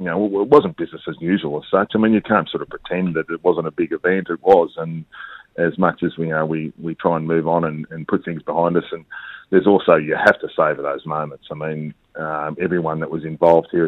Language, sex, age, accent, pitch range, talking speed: English, male, 40-59, Australian, 80-90 Hz, 260 wpm